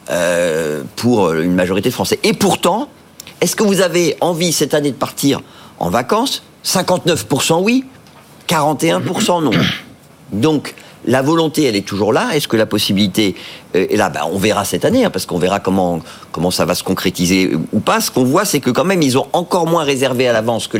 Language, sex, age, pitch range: French, male, 50-69, 105-160 Hz